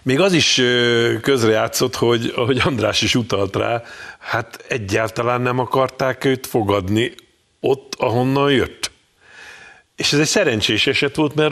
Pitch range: 105-145 Hz